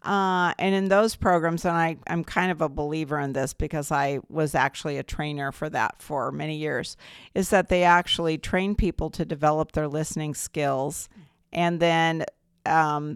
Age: 50-69